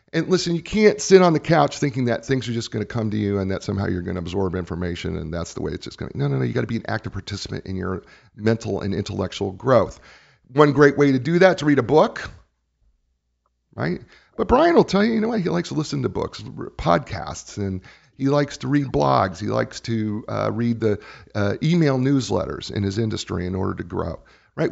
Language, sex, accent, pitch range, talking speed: English, male, American, 95-145 Hz, 240 wpm